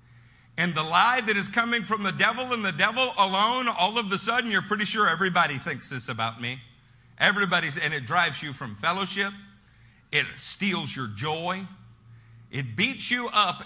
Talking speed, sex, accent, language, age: 175 wpm, male, American, English, 50-69